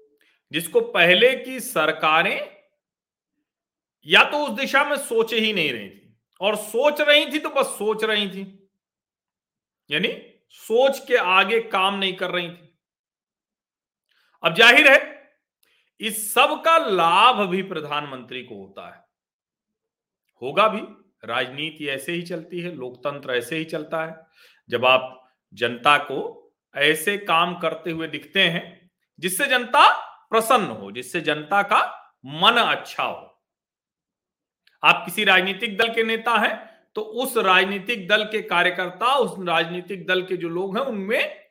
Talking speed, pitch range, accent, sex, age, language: 140 wpm, 175-275 Hz, native, male, 40-59, Hindi